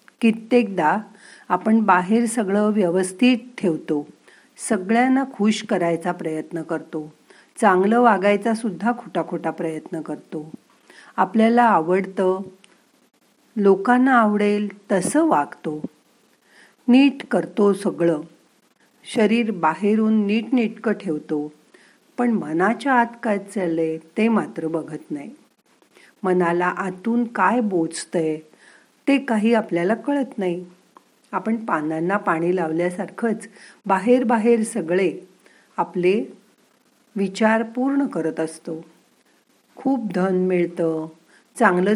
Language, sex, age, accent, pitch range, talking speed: Marathi, female, 50-69, native, 170-225 Hz, 95 wpm